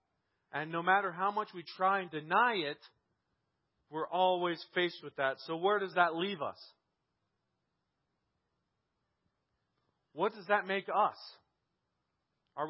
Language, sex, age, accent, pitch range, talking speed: English, male, 40-59, American, 145-190 Hz, 130 wpm